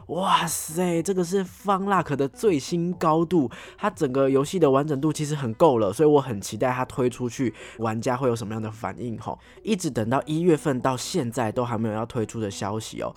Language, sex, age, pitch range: Chinese, male, 20-39, 110-160 Hz